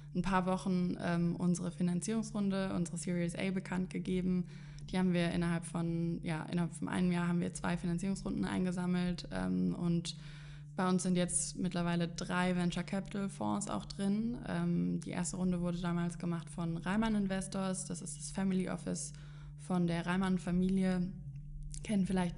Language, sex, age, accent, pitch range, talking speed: German, female, 20-39, German, 160-180 Hz, 160 wpm